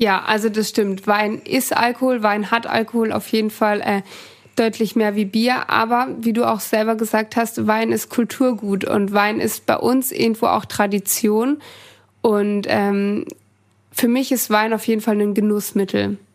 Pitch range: 215-245 Hz